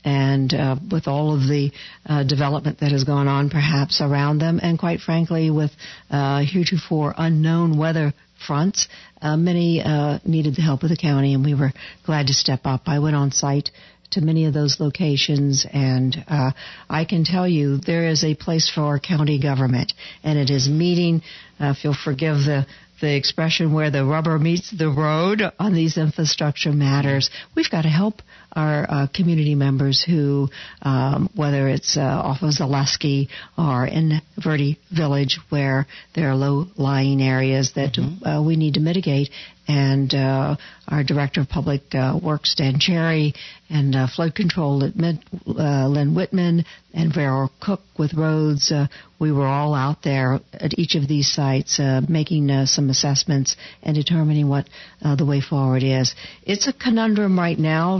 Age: 60-79